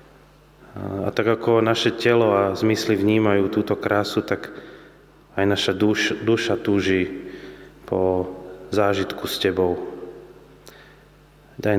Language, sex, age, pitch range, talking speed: Slovak, male, 30-49, 95-110 Hz, 105 wpm